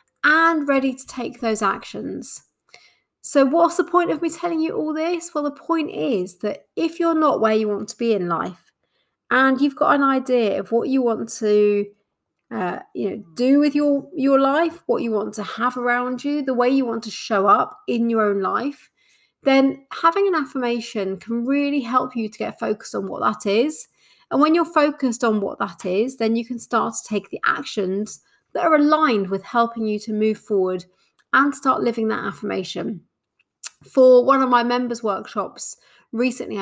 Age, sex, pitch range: 30-49, female, 215-285 Hz